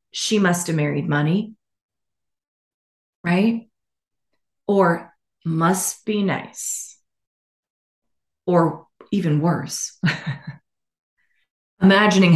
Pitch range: 160-225 Hz